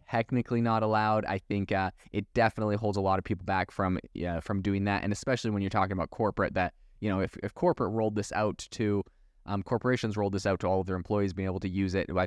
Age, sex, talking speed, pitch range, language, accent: 20-39, male, 255 wpm, 95-110 Hz, English, American